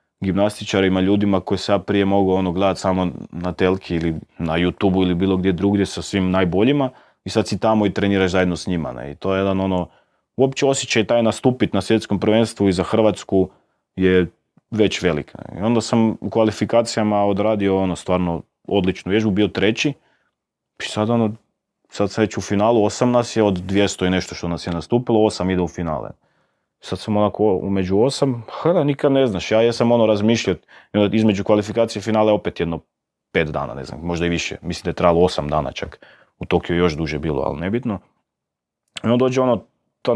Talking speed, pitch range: 190 wpm, 90-110 Hz